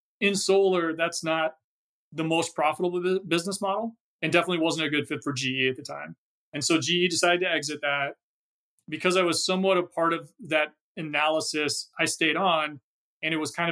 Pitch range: 145-175 Hz